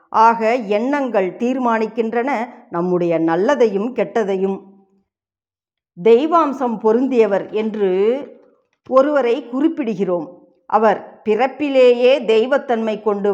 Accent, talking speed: native, 65 wpm